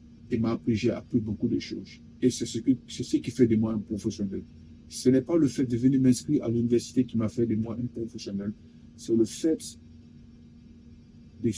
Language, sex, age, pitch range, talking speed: French, male, 50-69, 95-120 Hz, 210 wpm